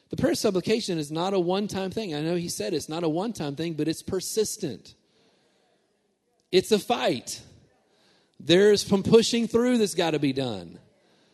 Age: 40-59